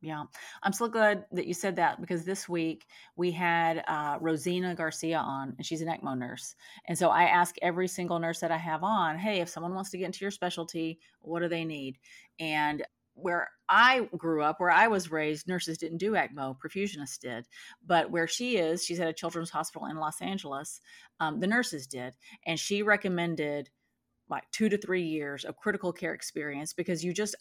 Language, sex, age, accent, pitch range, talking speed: English, female, 30-49, American, 160-190 Hz, 200 wpm